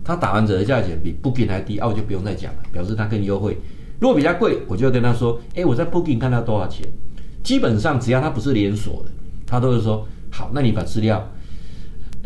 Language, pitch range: Chinese, 90-120 Hz